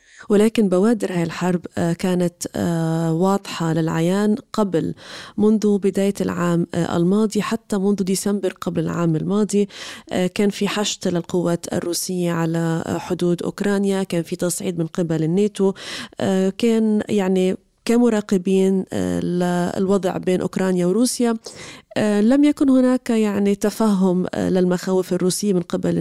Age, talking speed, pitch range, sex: 20-39, 110 wpm, 180-210 Hz, female